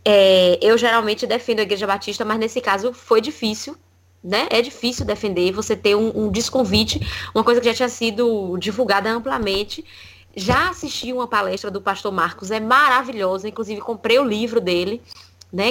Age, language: 10-29, Portuguese